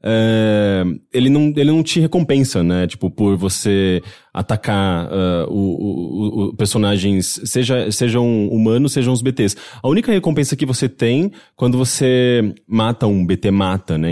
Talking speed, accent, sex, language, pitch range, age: 155 wpm, Brazilian, male, English, 95-125 Hz, 20-39